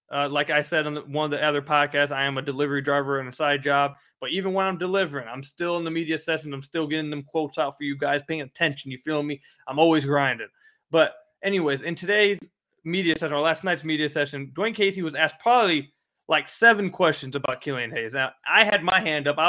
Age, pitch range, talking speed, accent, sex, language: 20-39, 145-175 Hz, 235 wpm, American, male, English